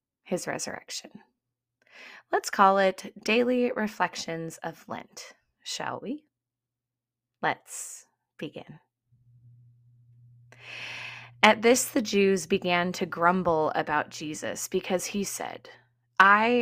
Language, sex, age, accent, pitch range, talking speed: English, female, 20-39, American, 160-210 Hz, 95 wpm